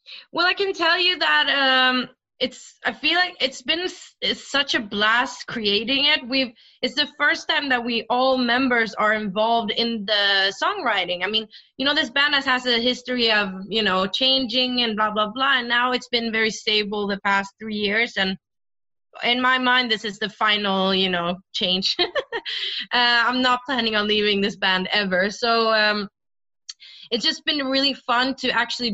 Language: German